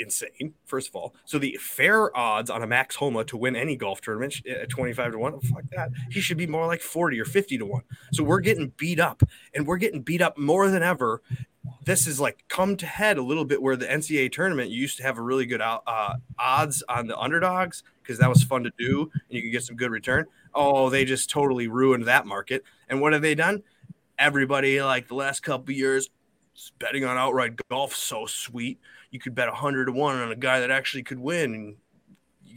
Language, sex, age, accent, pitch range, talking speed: English, male, 20-39, American, 130-155 Hz, 230 wpm